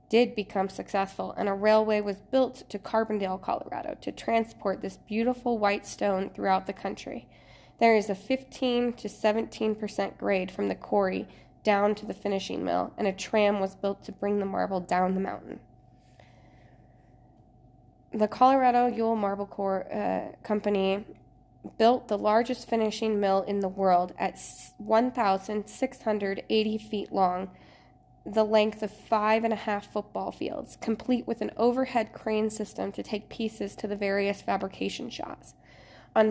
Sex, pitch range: female, 195-225 Hz